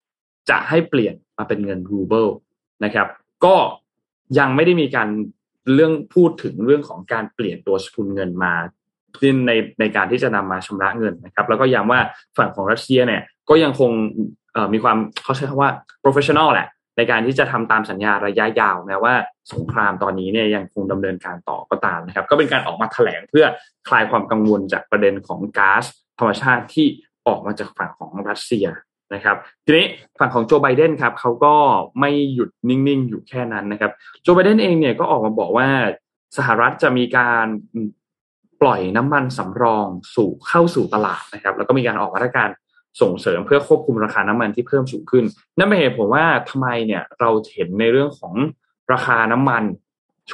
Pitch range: 105-140 Hz